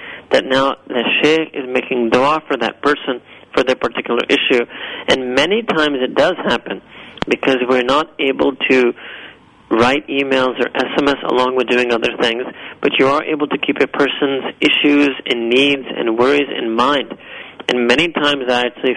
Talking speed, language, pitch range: 170 wpm, English, 120-145 Hz